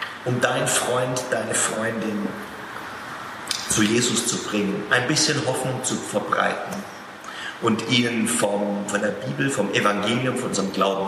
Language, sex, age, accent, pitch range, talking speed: German, male, 40-59, German, 105-150 Hz, 135 wpm